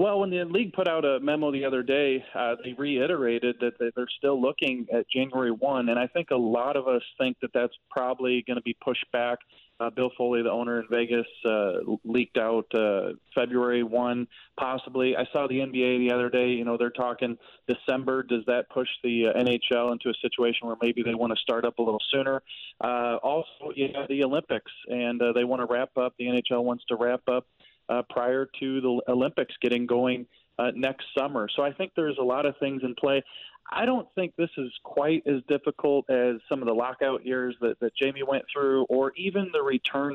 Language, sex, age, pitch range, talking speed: English, male, 30-49, 120-135 Hz, 215 wpm